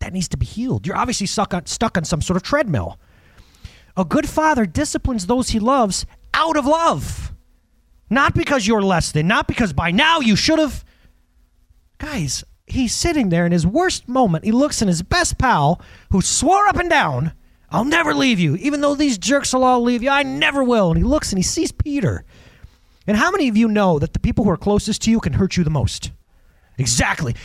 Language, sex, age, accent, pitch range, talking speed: English, male, 30-49, American, 165-270 Hz, 210 wpm